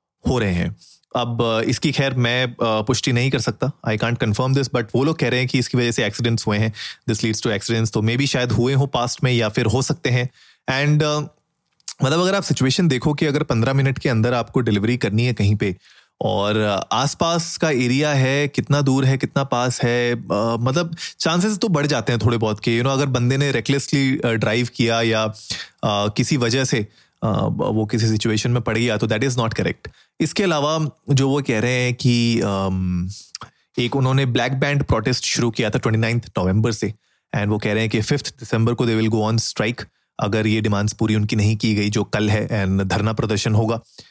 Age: 30-49